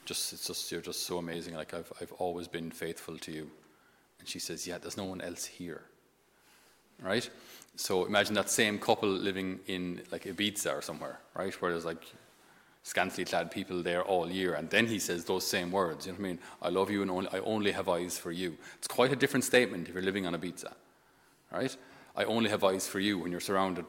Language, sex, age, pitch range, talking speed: English, male, 30-49, 90-115 Hz, 225 wpm